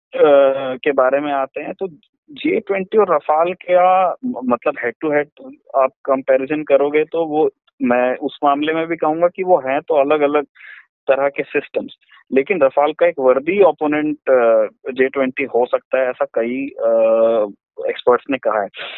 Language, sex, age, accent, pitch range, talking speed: Hindi, male, 20-39, native, 125-175 Hz, 165 wpm